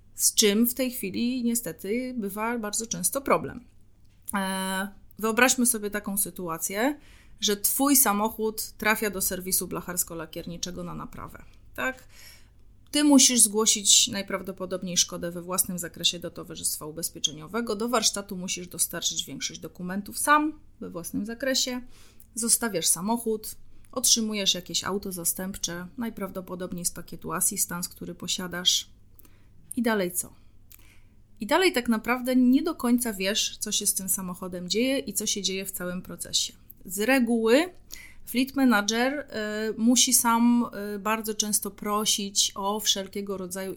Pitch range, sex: 180-225 Hz, female